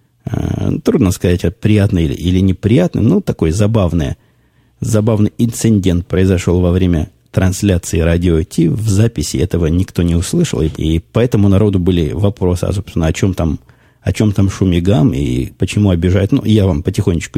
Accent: native